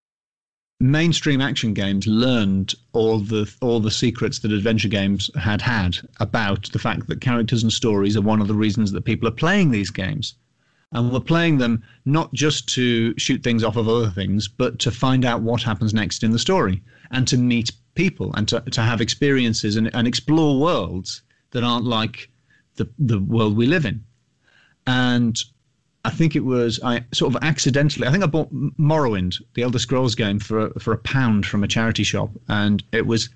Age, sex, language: 40-59, male, English